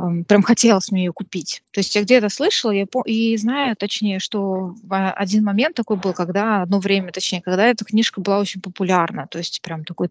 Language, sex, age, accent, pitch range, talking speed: Russian, female, 20-39, native, 185-225 Hz, 200 wpm